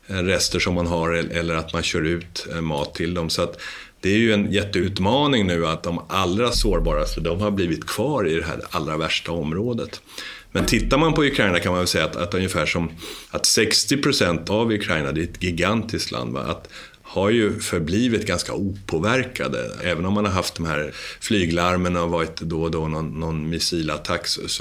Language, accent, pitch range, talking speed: Swedish, native, 80-95 Hz, 195 wpm